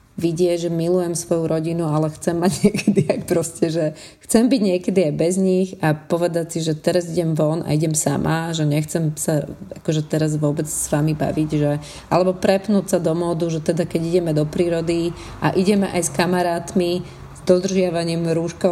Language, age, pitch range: Slovak, 30-49, 160-185 Hz